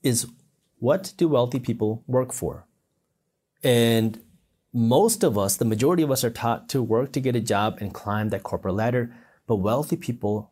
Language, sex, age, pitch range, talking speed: English, male, 30-49, 115-160 Hz, 175 wpm